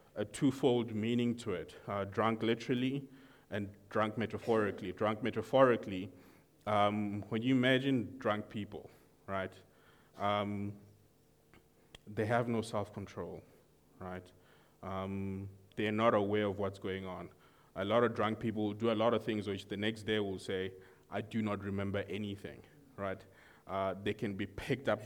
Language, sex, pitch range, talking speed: English, male, 100-120 Hz, 150 wpm